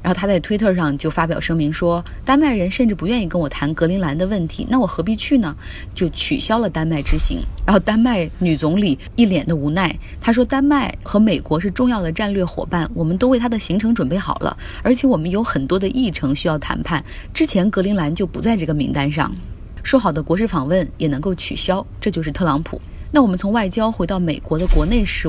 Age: 20-39